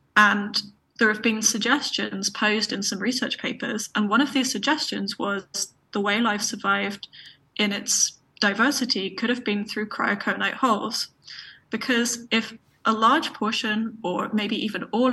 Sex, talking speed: female, 150 wpm